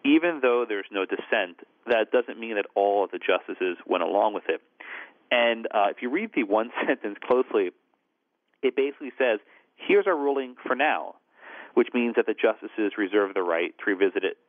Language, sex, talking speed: English, male, 185 wpm